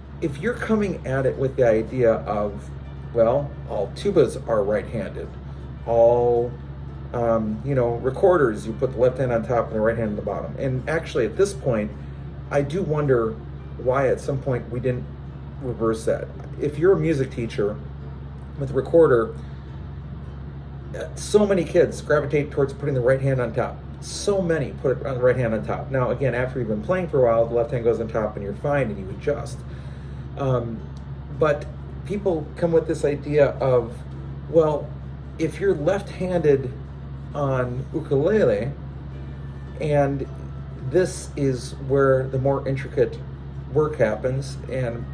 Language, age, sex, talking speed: English, 40-59, male, 160 wpm